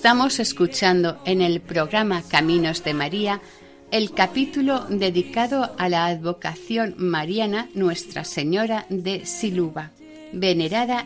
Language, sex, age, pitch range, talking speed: Spanish, female, 50-69, 170-230 Hz, 110 wpm